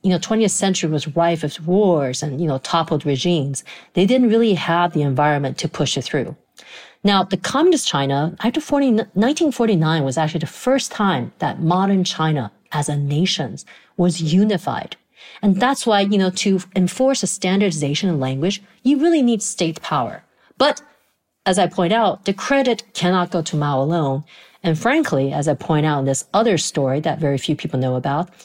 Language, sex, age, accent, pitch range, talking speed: English, female, 40-59, American, 150-210 Hz, 180 wpm